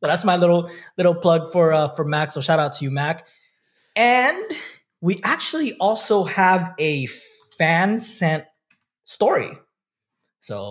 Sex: male